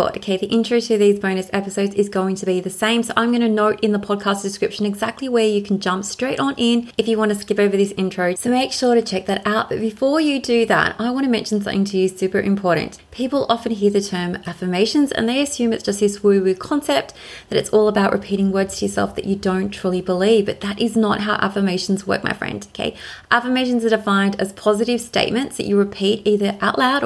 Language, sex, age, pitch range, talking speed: English, female, 20-39, 195-235 Hz, 240 wpm